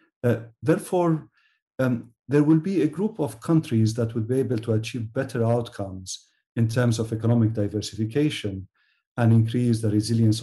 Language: English